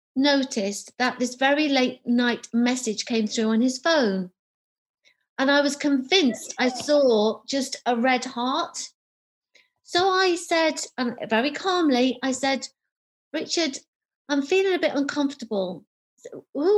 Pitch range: 225-300 Hz